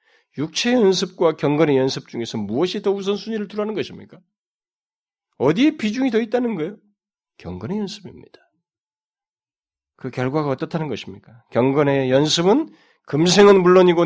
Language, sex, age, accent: Korean, male, 40-59, native